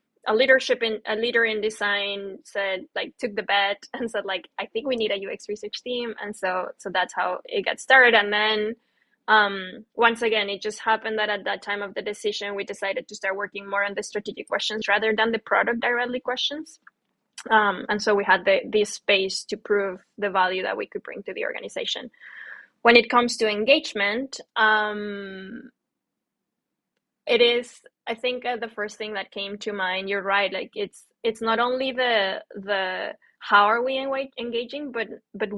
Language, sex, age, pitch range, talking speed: English, female, 10-29, 200-240 Hz, 190 wpm